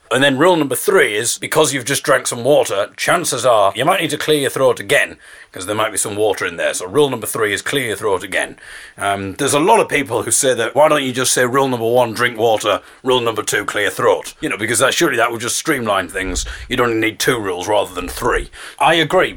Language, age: English, 30-49